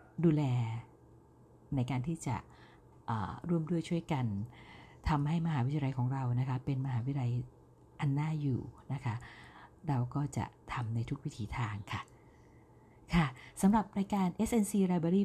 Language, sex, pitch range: Thai, female, 130-170 Hz